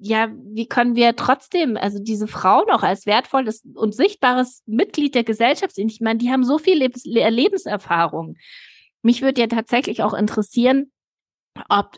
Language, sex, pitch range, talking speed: German, female, 200-255 Hz, 150 wpm